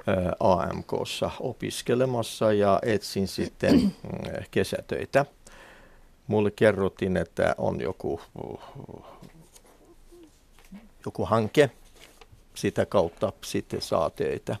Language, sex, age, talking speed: Finnish, male, 50-69, 75 wpm